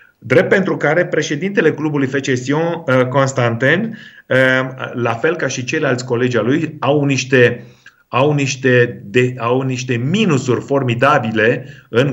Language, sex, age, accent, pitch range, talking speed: Romanian, male, 30-49, native, 120-150 Hz, 125 wpm